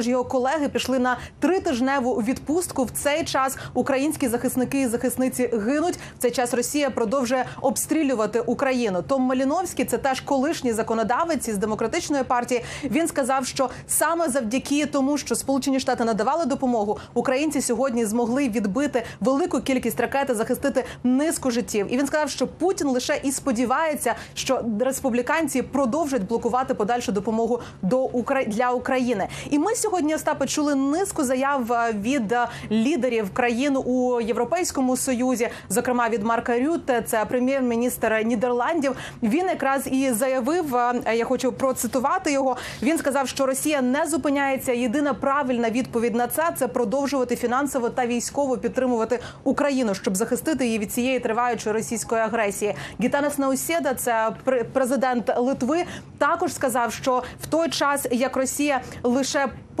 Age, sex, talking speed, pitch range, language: 30-49, female, 140 wpm, 240-280 Hz, Ukrainian